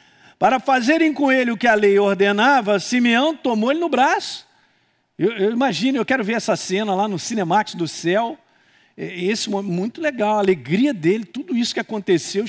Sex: male